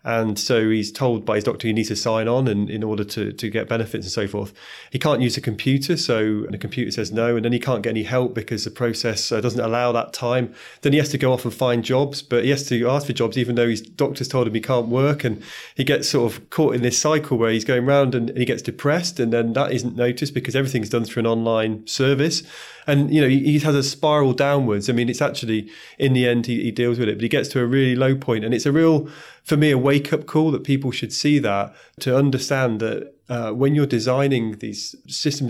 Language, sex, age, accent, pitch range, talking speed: English, male, 30-49, British, 115-135 Hz, 255 wpm